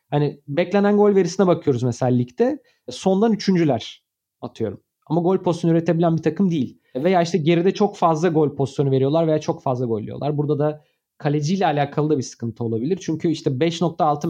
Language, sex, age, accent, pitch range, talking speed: Turkish, male, 30-49, native, 135-185 Hz, 170 wpm